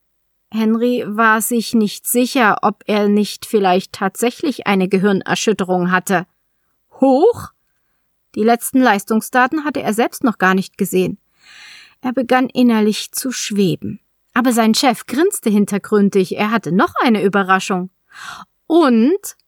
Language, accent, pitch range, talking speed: German, German, 185-260 Hz, 125 wpm